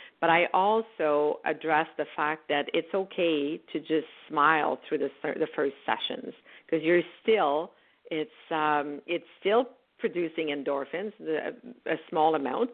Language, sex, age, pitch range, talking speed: English, female, 50-69, 150-175 Hz, 140 wpm